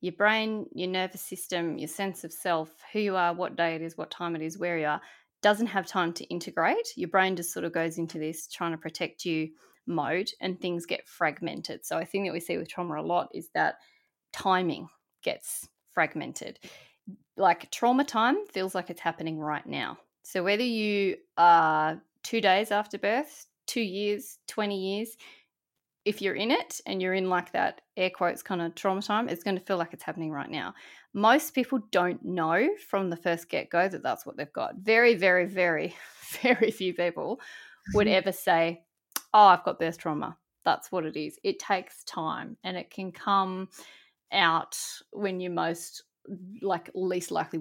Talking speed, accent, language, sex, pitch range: 190 wpm, Australian, English, female, 170-210 Hz